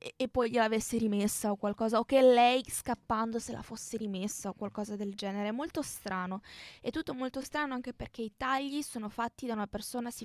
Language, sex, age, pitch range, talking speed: Italian, female, 20-39, 200-255 Hz, 205 wpm